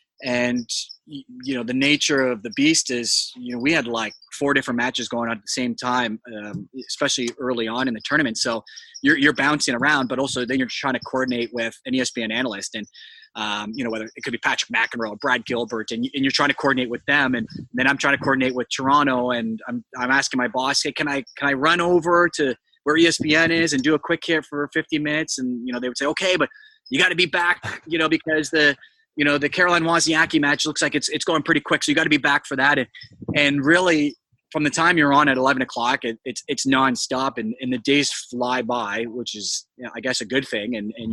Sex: male